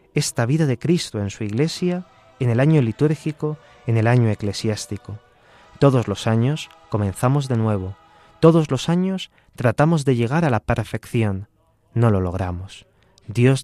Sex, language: male, Spanish